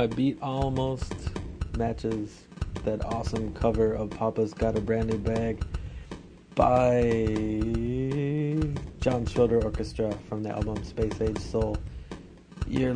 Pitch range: 90-110 Hz